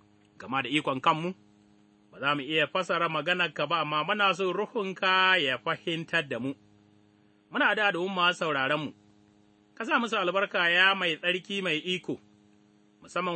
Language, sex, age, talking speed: English, male, 30-49, 115 wpm